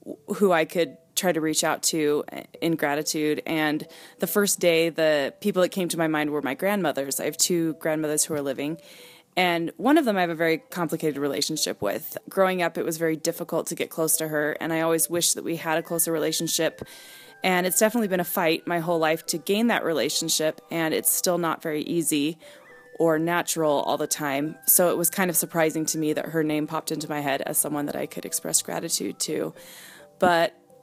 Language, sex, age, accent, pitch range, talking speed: English, female, 20-39, American, 160-185 Hz, 215 wpm